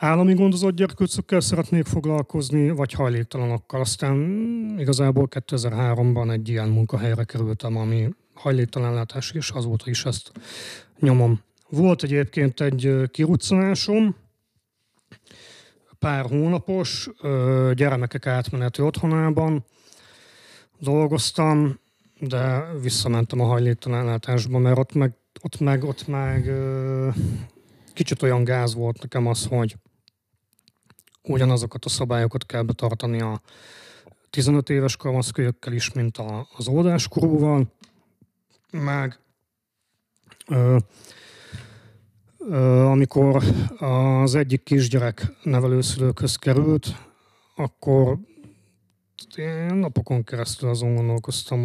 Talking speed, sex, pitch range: 90 wpm, male, 115-140 Hz